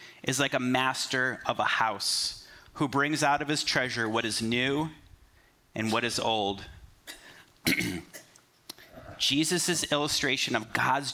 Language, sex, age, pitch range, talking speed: English, male, 30-49, 110-145 Hz, 130 wpm